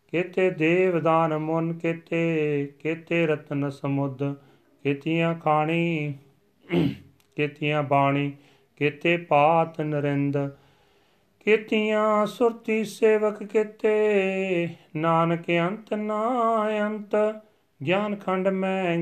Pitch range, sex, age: 140-170 Hz, male, 40-59